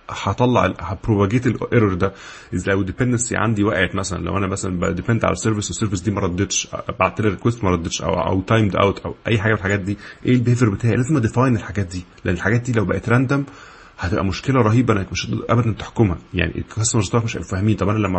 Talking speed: 205 wpm